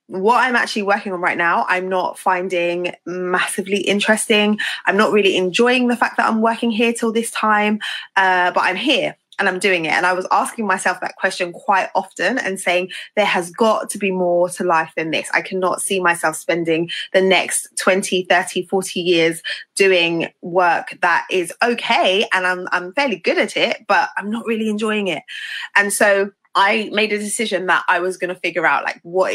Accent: British